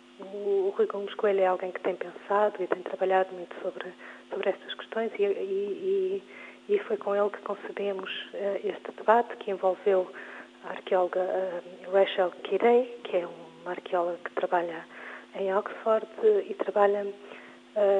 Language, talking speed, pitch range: Portuguese, 155 wpm, 185-210 Hz